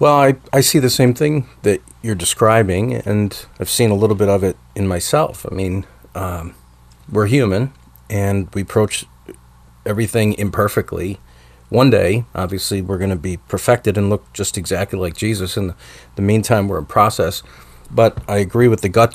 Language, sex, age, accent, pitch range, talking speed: English, male, 40-59, American, 95-120 Hz, 175 wpm